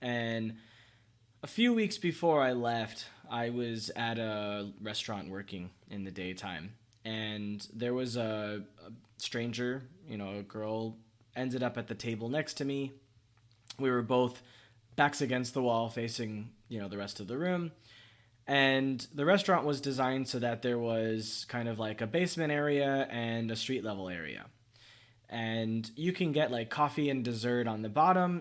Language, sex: English, male